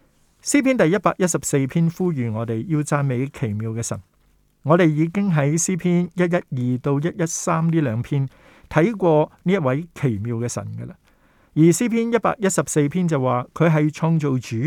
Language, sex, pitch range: Chinese, male, 130-170 Hz